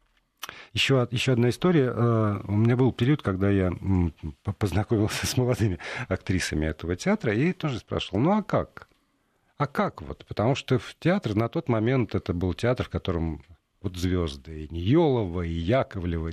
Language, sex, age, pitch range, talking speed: Russian, male, 50-69, 90-115 Hz, 160 wpm